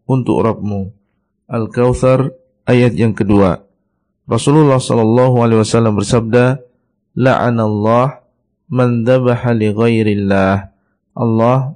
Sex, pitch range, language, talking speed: male, 110-125 Hz, Indonesian, 65 wpm